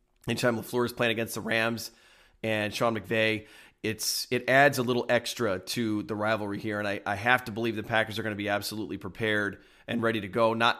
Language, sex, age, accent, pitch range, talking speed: English, male, 30-49, American, 105-120 Hz, 215 wpm